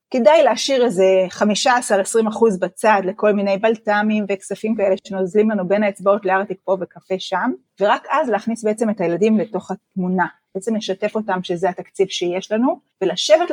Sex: female